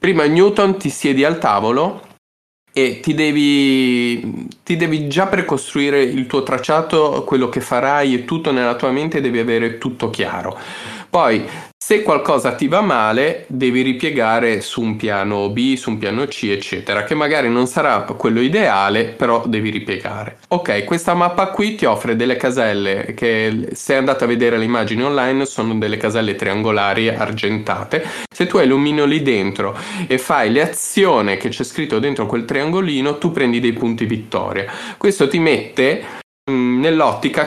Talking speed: 160 wpm